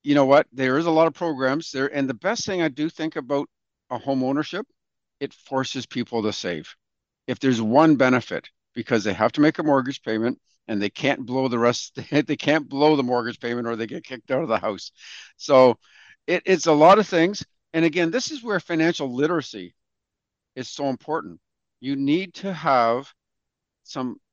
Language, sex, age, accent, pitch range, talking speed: English, male, 50-69, American, 125-160 Hz, 195 wpm